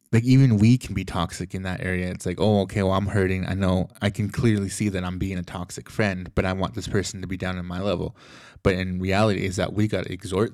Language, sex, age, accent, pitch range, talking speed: English, male, 20-39, American, 95-110 Hz, 275 wpm